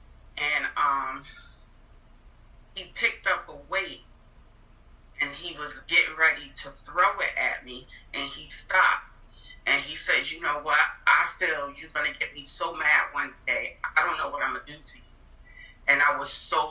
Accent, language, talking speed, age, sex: American, English, 175 wpm, 40-59, female